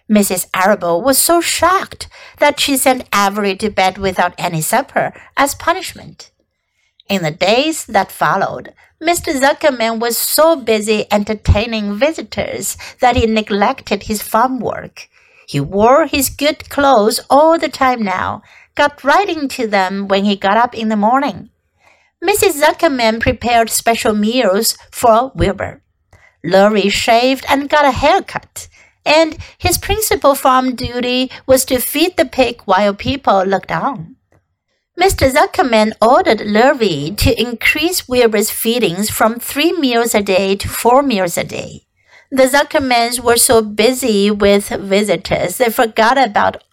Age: 60-79